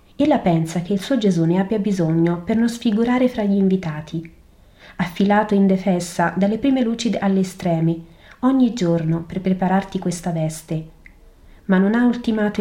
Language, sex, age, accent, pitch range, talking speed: Italian, female, 30-49, native, 165-205 Hz, 155 wpm